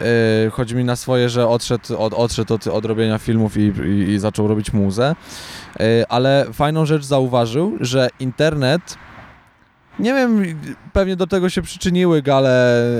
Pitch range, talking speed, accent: 120-145 Hz, 145 wpm, native